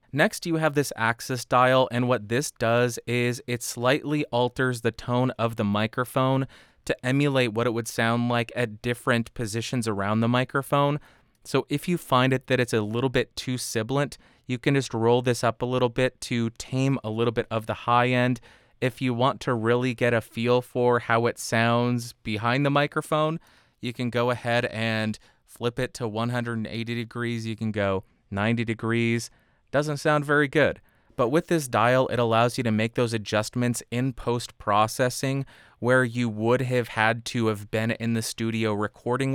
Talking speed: 185 wpm